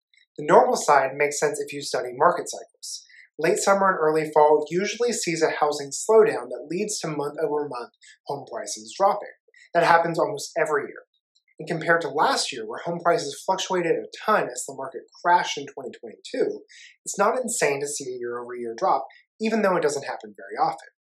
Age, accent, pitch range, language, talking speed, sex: 30-49, American, 150-225 Hz, English, 195 wpm, male